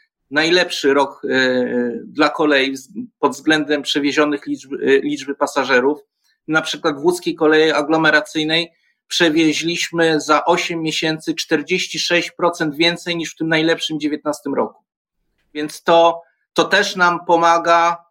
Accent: native